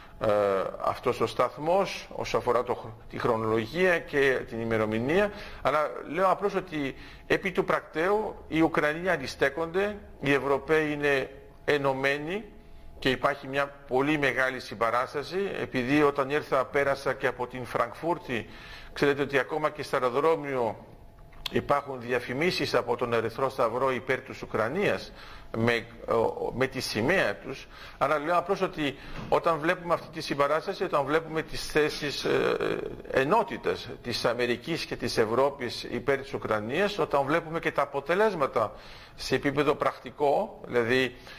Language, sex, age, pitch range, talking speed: Greek, male, 50-69, 125-160 Hz, 130 wpm